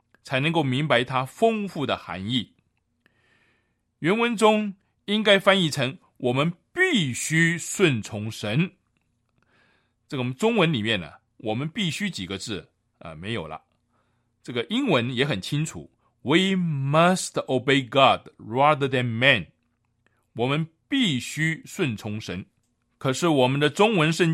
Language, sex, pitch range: Chinese, male, 120-190 Hz